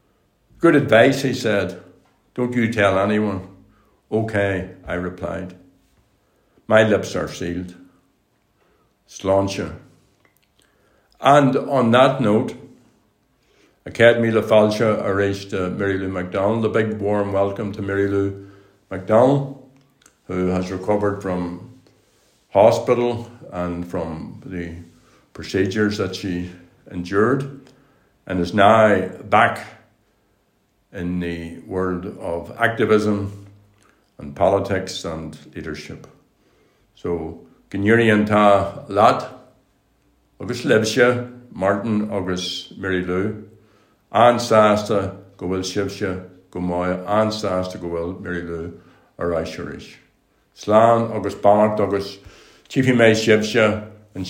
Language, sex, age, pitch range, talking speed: English, male, 60-79, 90-110 Hz, 100 wpm